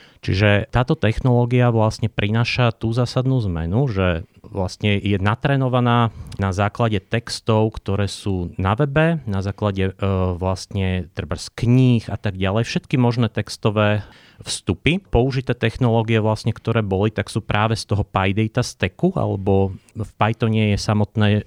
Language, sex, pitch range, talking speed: Slovak, male, 100-115 Hz, 140 wpm